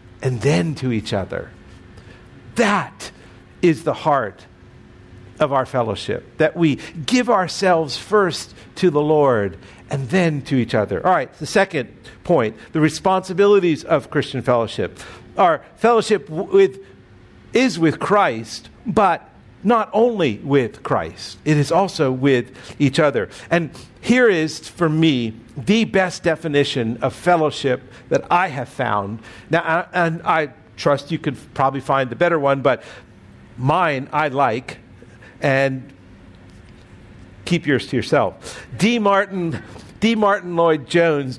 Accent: American